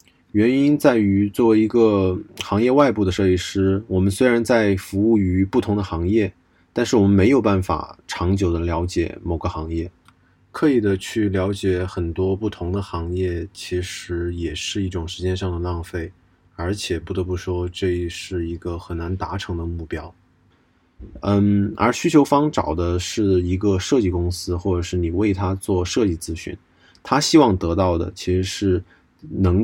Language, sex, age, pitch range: Chinese, male, 20-39, 90-105 Hz